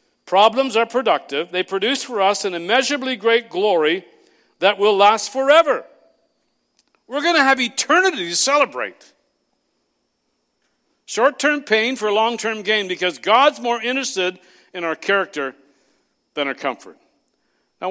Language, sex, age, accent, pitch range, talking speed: English, male, 50-69, American, 180-255 Hz, 125 wpm